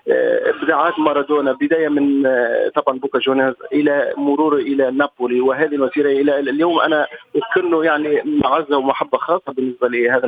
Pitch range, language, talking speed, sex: 130-165 Hz, Arabic, 130 wpm, male